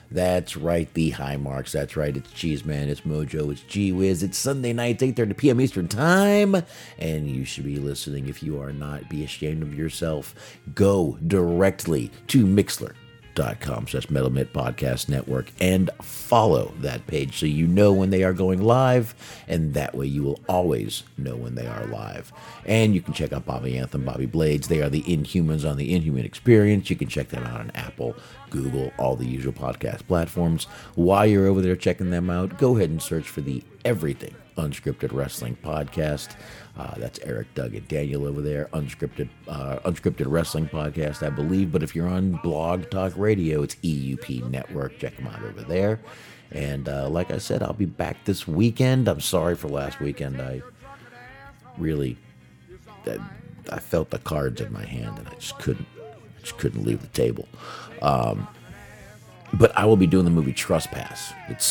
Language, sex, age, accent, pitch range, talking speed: English, male, 50-69, American, 70-95 Hz, 185 wpm